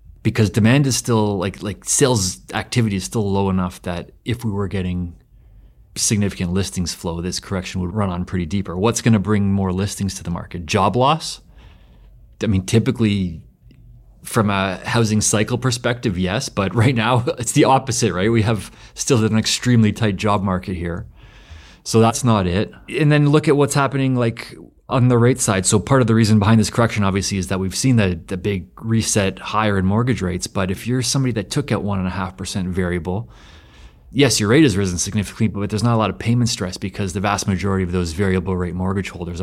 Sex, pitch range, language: male, 95-120 Hz, English